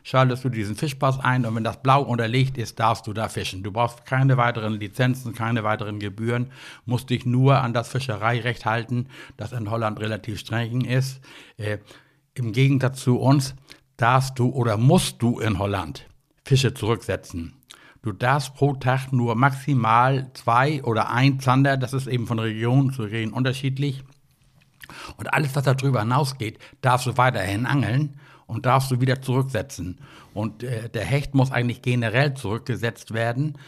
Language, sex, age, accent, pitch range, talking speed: German, male, 60-79, German, 110-135 Hz, 160 wpm